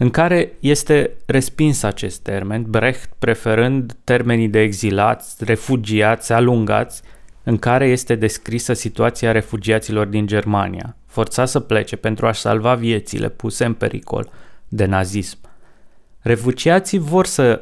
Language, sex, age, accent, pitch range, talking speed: Romanian, male, 20-39, native, 110-130 Hz, 125 wpm